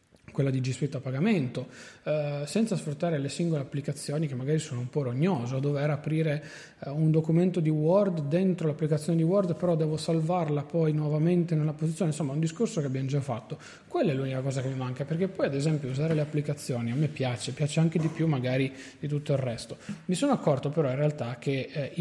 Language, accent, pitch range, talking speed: Italian, native, 135-160 Hz, 215 wpm